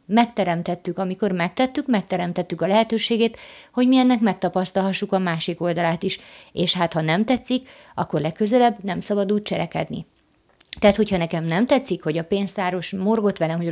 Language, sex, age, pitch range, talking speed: Hungarian, female, 30-49, 175-210 Hz, 155 wpm